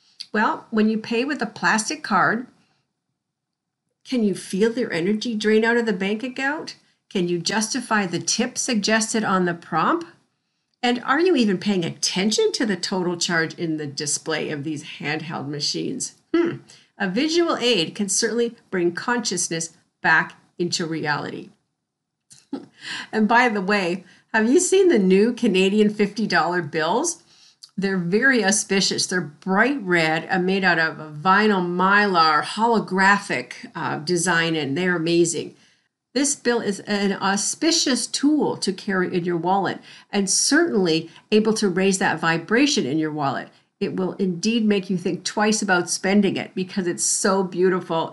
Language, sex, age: English, female, 50-69